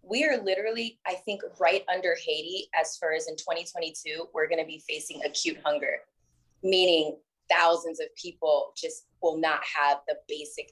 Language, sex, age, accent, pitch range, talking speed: English, female, 20-39, American, 155-215 Hz, 160 wpm